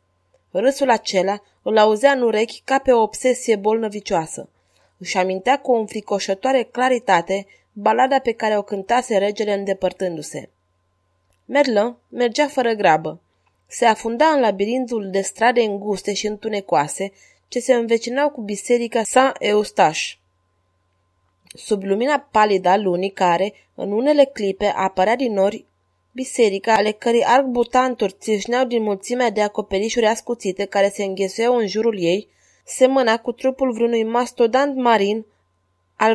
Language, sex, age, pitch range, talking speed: Romanian, female, 20-39, 195-240 Hz, 130 wpm